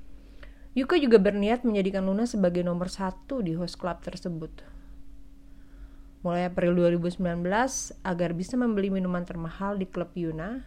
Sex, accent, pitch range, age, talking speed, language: female, native, 165-200 Hz, 30-49, 130 wpm, Indonesian